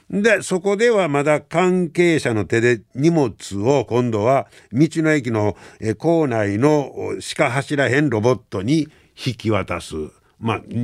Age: 60-79